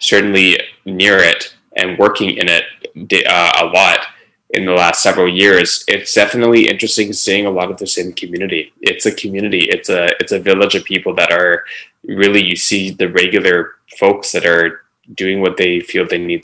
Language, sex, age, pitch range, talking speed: English, male, 20-39, 90-115 Hz, 185 wpm